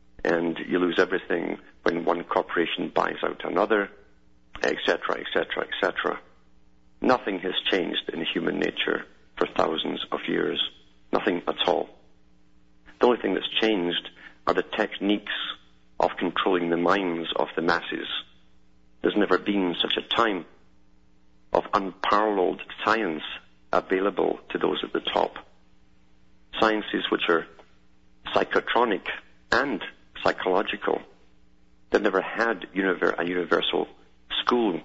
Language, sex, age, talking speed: English, male, 50-69, 120 wpm